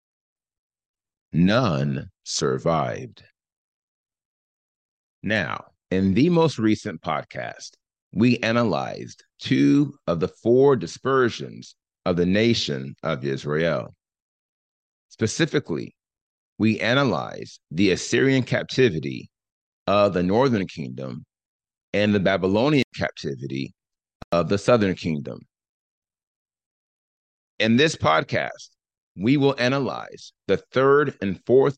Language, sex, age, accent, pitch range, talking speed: English, male, 30-49, American, 85-130 Hz, 90 wpm